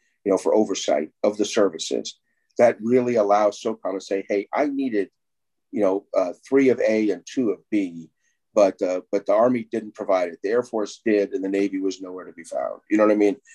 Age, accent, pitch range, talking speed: 50-69, American, 100-130 Hz, 225 wpm